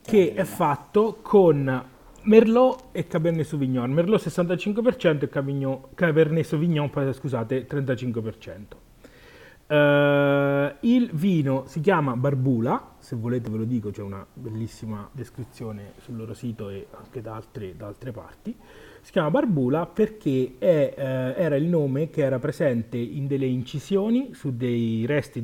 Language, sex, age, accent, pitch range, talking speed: Italian, male, 30-49, native, 115-150 Hz, 125 wpm